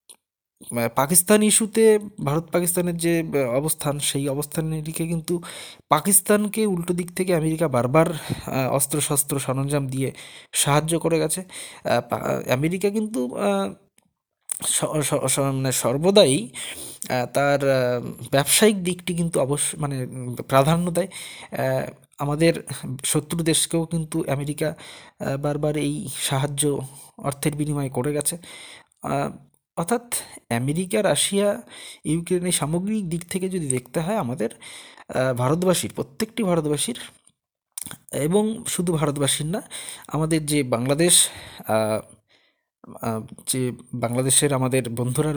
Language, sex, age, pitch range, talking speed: Bengali, male, 20-39, 135-175 Hz, 80 wpm